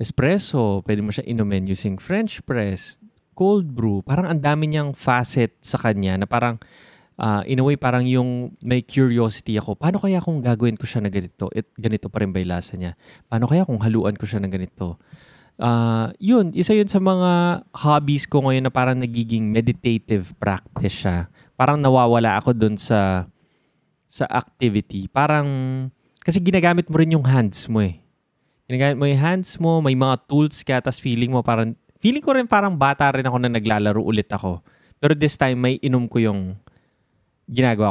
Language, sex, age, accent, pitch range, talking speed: Filipino, male, 20-39, native, 105-145 Hz, 175 wpm